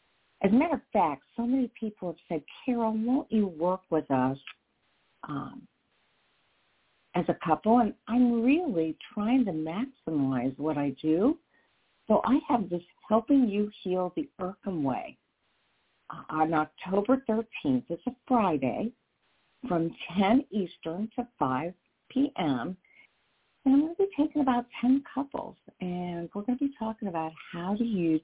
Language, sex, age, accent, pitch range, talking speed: English, female, 50-69, American, 160-250 Hz, 150 wpm